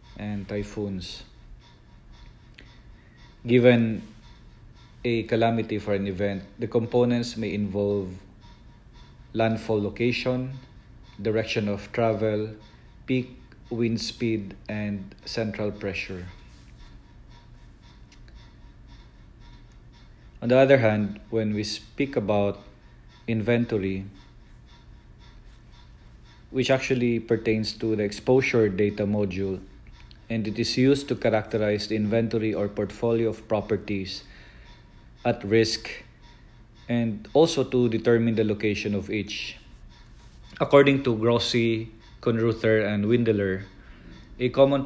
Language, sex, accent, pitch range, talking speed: English, male, Filipino, 105-120 Hz, 95 wpm